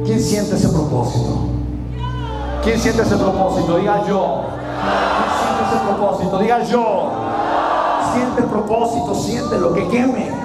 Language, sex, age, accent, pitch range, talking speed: Spanish, male, 40-59, Mexican, 180-235 Hz, 125 wpm